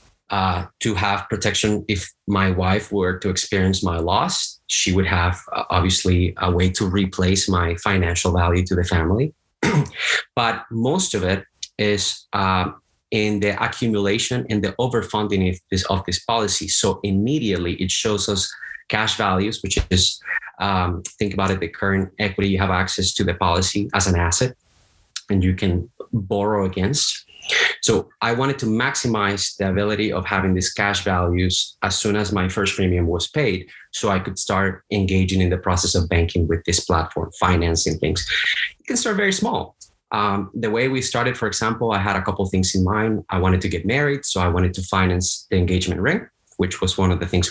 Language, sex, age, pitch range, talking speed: English, male, 30-49, 90-105 Hz, 185 wpm